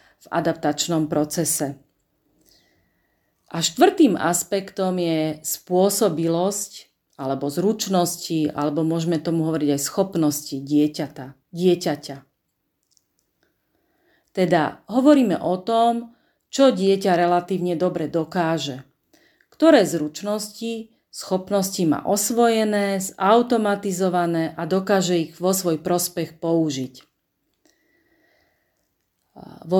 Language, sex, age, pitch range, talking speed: Slovak, female, 40-59, 165-205 Hz, 85 wpm